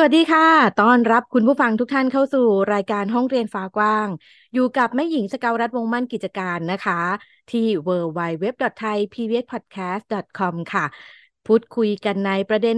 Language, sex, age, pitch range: Thai, female, 20-39, 190-245 Hz